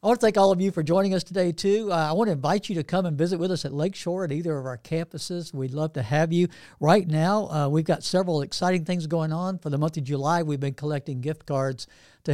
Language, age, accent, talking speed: English, 60-79, American, 275 wpm